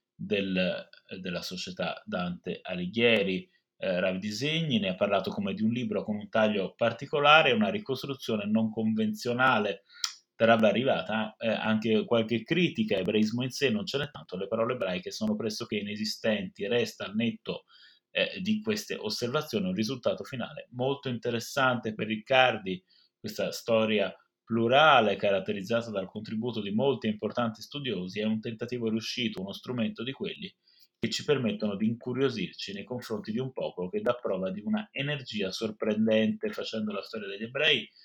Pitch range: 105-140 Hz